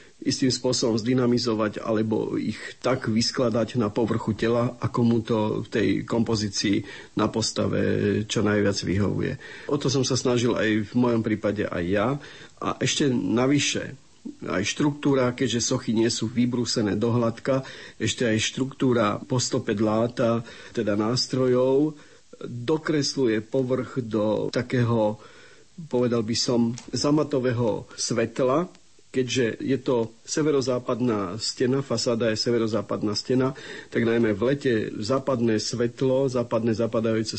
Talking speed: 125 wpm